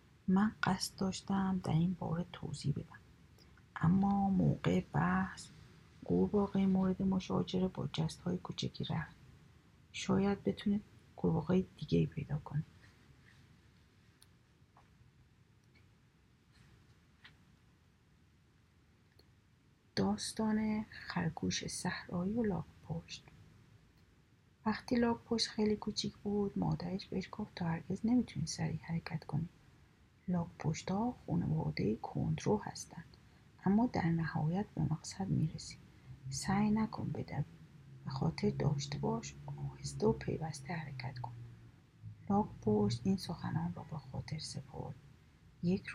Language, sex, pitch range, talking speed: Persian, female, 150-195 Hz, 100 wpm